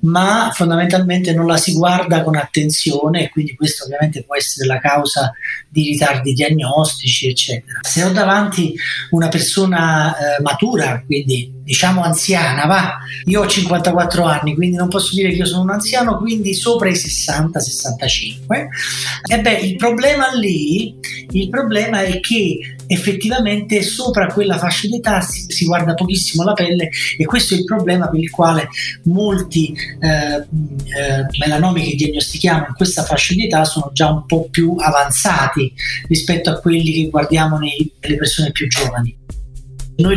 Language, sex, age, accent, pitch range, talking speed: Italian, male, 30-49, native, 150-190 Hz, 155 wpm